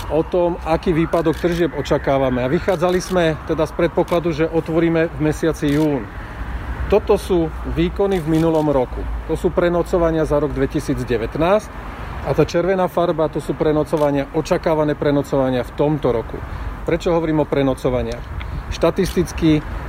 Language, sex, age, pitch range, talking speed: Slovak, male, 40-59, 130-165 Hz, 140 wpm